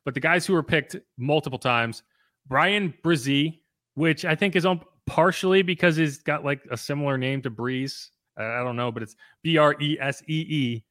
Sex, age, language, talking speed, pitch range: male, 30-49, English, 165 wpm, 125-160 Hz